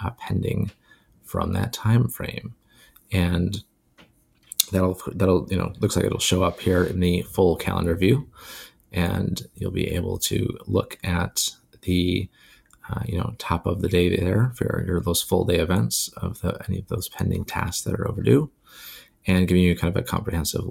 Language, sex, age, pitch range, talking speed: English, male, 30-49, 90-105 Hz, 175 wpm